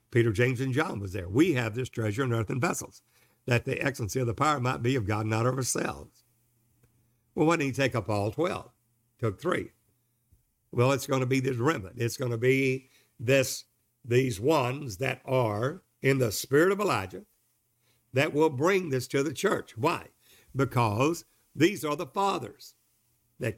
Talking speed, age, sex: 180 wpm, 60-79, male